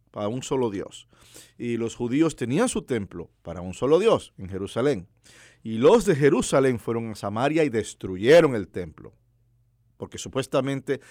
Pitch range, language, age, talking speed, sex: 105-140 Hz, English, 50-69, 155 wpm, male